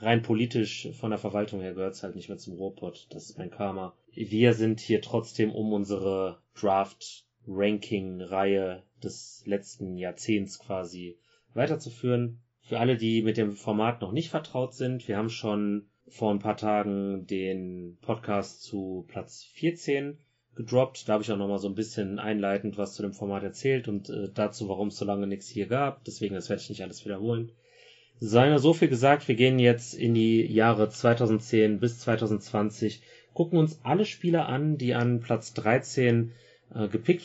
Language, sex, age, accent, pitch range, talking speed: English, male, 30-49, German, 100-120 Hz, 170 wpm